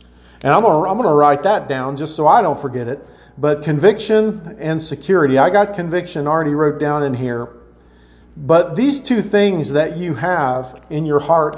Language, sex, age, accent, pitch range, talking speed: English, male, 40-59, American, 120-185 Hz, 180 wpm